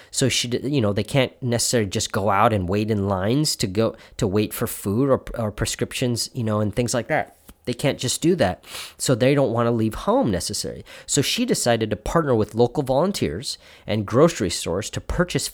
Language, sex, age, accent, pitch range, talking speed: English, male, 30-49, American, 95-130 Hz, 210 wpm